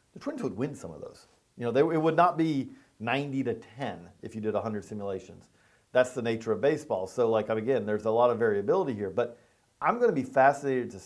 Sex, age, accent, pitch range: male, 40-59, American, 110-145 Hz